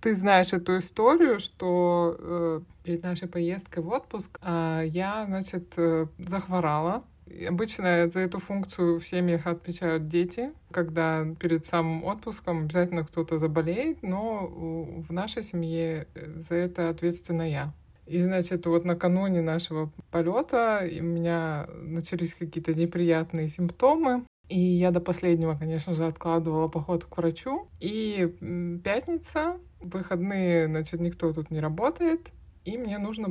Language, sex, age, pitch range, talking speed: Russian, male, 20-39, 165-190 Hz, 130 wpm